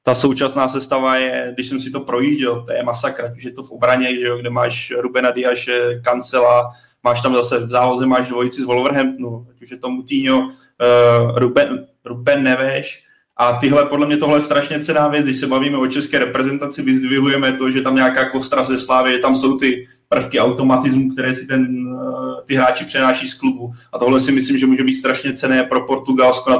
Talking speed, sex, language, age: 200 wpm, male, Czech, 20-39